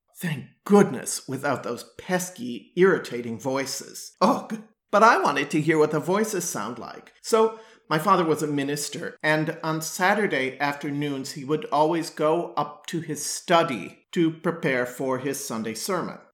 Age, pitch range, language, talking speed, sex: 40-59, 140-170 Hz, English, 155 wpm, male